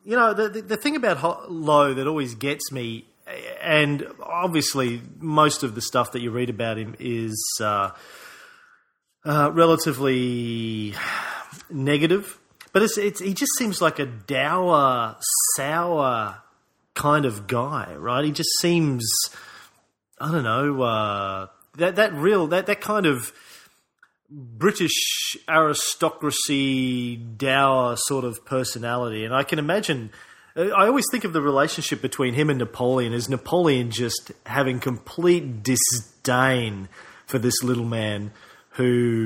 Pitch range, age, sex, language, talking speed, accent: 115-150 Hz, 30-49, male, English, 135 wpm, Australian